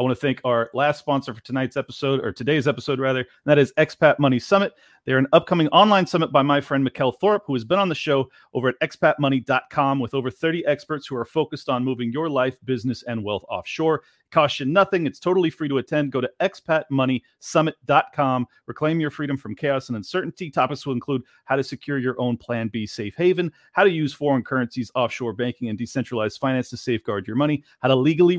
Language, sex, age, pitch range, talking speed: English, male, 40-59, 130-155 Hz, 210 wpm